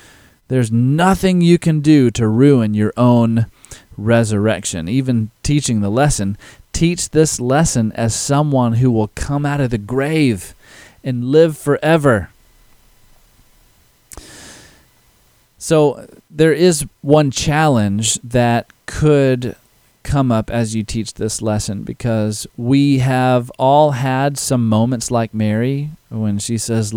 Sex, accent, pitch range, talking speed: male, American, 110-140 Hz, 120 wpm